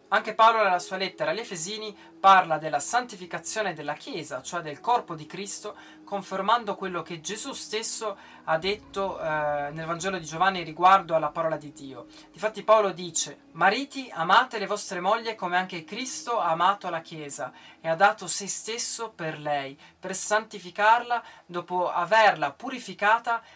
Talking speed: 155 wpm